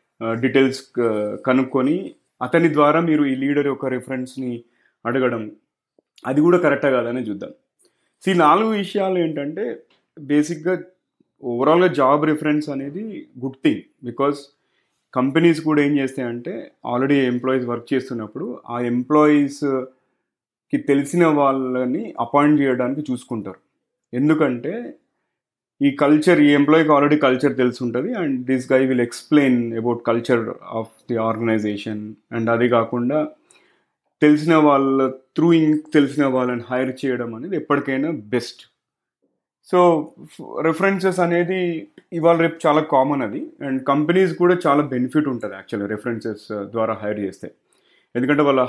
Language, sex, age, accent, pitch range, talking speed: Telugu, male, 30-49, native, 120-150 Hz, 115 wpm